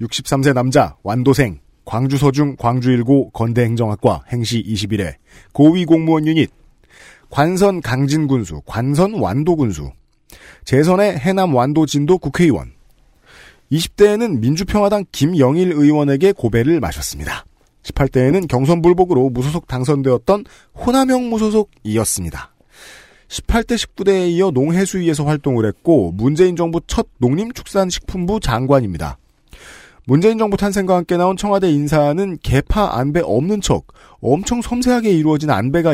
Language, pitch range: Korean, 120-180 Hz